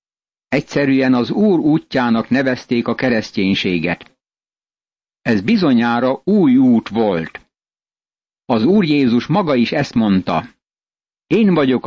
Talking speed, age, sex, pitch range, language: 105 wpm, 60-79, male, 115-145 Hz, Hungarian